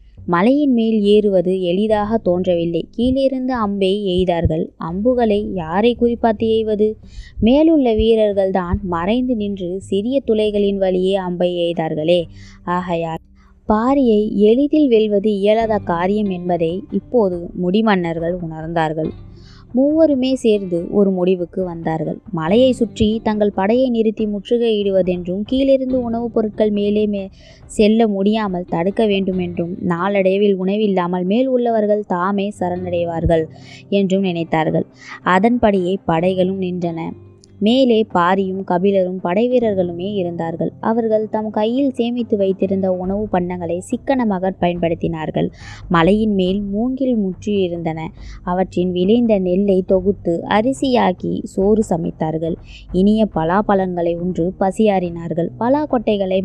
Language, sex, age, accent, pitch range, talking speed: Tamil, female, 20-39, native, 175-220 Hz, 100 wpm